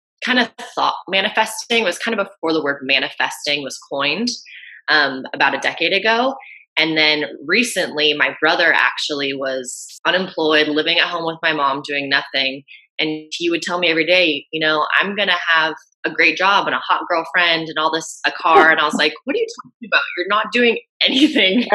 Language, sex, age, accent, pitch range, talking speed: English, female, 20-39, American, 145-205 Hz, 200 wpm